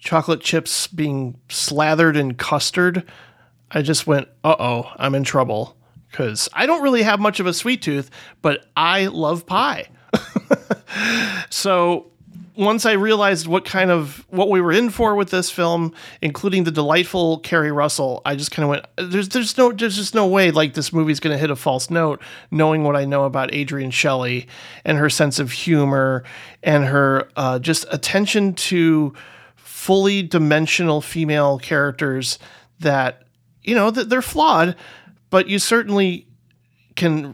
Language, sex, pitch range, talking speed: English, male, 135-175 Hz, 165 wpm